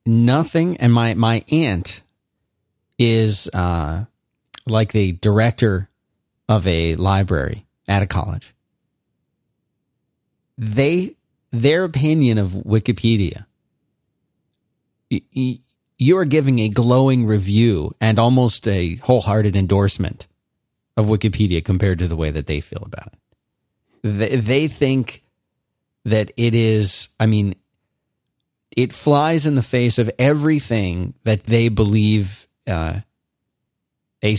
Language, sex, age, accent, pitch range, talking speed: English, male, 40-59, American, 100-130 Hz, 115 wpm